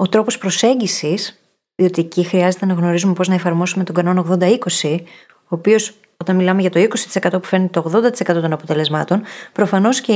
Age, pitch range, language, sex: 30-49, 175-225 Hz, Greek, female